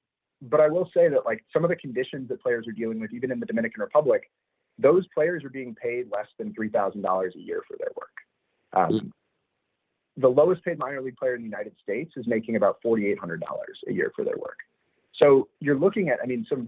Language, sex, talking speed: English, male, 215 wpm